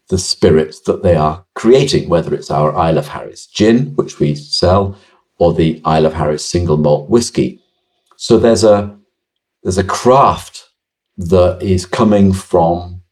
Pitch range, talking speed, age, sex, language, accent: 85-100 Hz, 155 wpm, 50-69, male, English, British